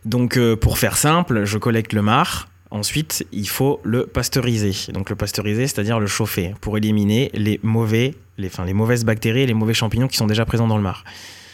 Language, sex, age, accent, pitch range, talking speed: French, male, 20-39, French, 100-125 Hz, 210 wpm